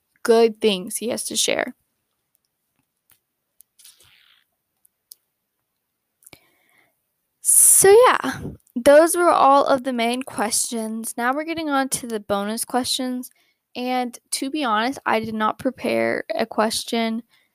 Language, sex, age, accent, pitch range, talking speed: English, female, 10-29, American, 230-280 Hz, 115 wpm